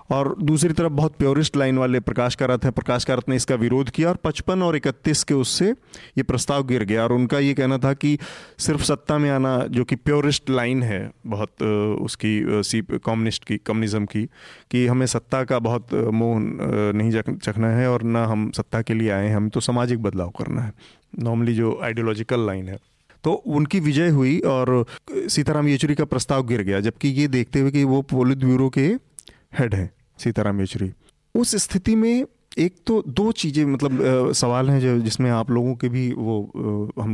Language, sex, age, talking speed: Hindi, male, 30-49, 190 wpm